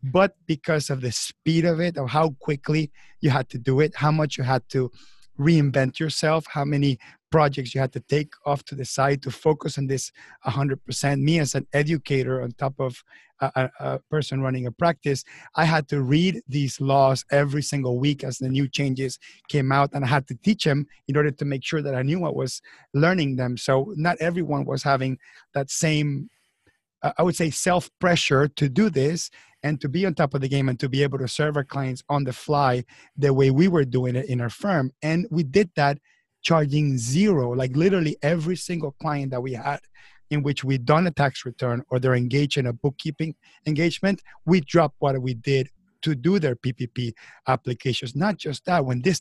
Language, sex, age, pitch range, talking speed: English, male, 30-49, 135-155 Hz, 205 wpm